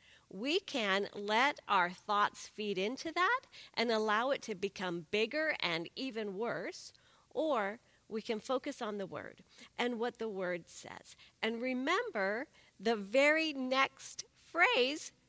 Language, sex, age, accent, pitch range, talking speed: English, female, 40-59, American, 220-290 Hz, 135 wpm